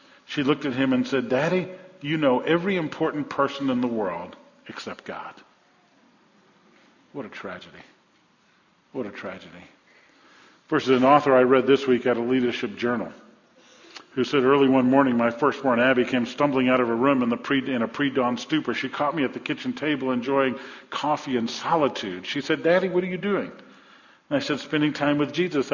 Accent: American